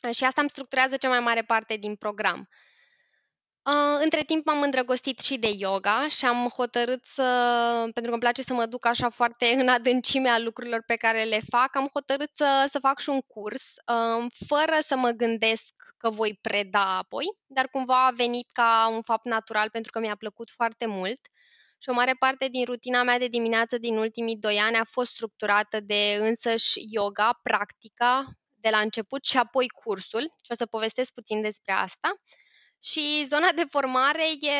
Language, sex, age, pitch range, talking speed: Romanian, female, 10-29, 220-270 Hz, 180 wpm